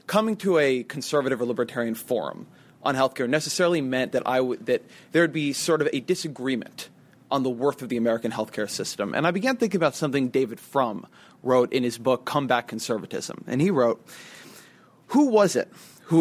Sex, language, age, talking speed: male, English, 30-49, 190 wpm